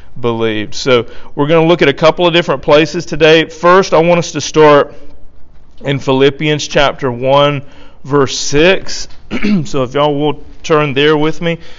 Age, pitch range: 40-59, 125-170 Hz